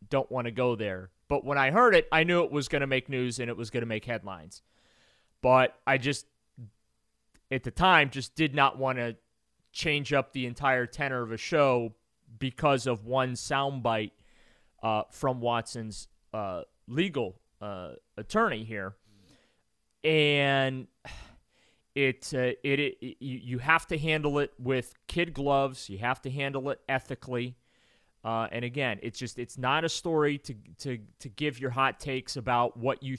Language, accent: English, American